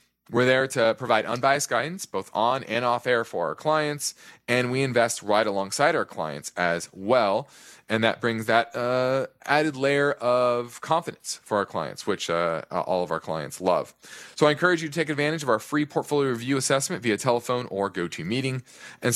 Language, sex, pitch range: English, male, 110-140 Hz